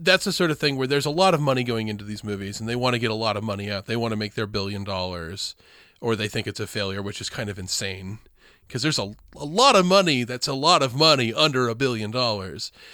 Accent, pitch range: American, 110-155 Hz